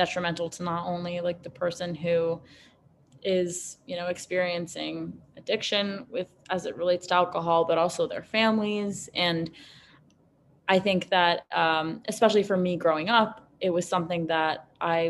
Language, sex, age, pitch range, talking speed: English, female, 20-39, 165-195 Hz, 150 wpm